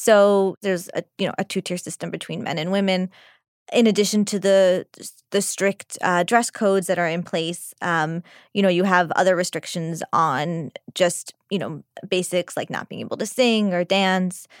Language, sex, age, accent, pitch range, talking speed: English, female, 20-39, American, 175-205 Hz, 185 wpm